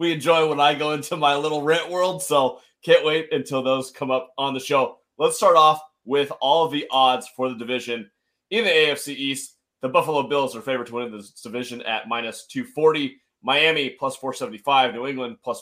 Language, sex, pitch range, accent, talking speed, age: English, male, 125-150 Hz, American, 205 wpm, 20-39